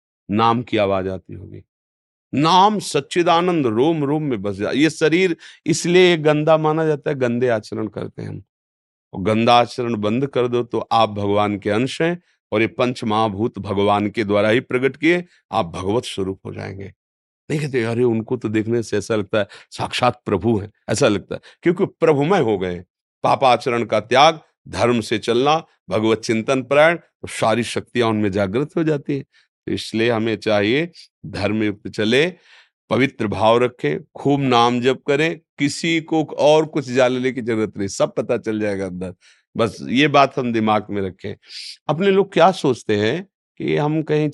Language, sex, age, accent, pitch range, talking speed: Hindi, male, 40-59, native, 105-145 Hz, 170 wpm